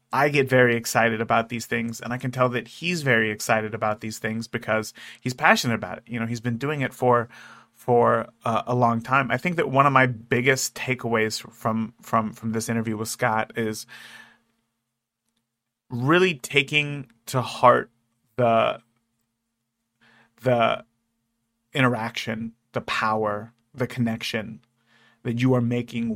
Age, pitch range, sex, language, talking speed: 30-49, 115-125 Hz, male, English, 155 wpm